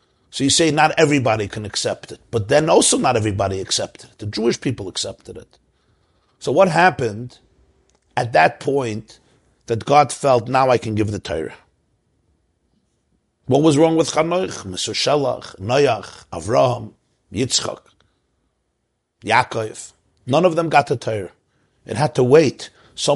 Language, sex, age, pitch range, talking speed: English, male, 50-69, 110-150 Hz, 145 wpm